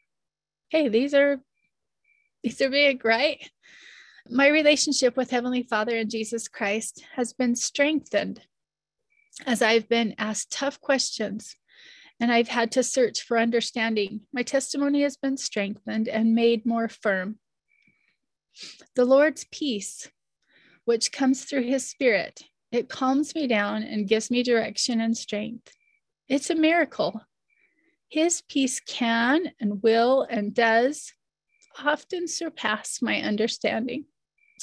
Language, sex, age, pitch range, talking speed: English, female, 30-49, 230-285 Hz, 125 wpm